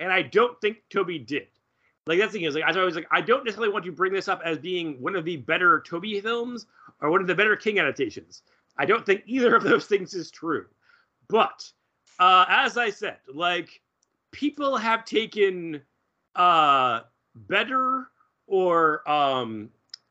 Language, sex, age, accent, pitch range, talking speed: English, male, 30-49, American, 155-230 Hz, 175 wpm